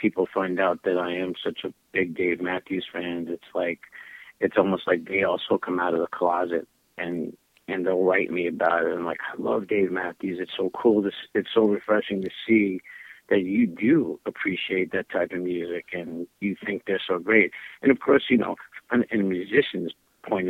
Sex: male